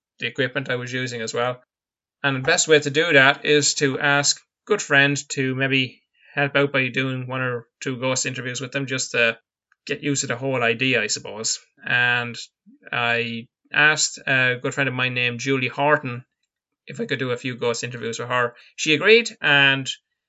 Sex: male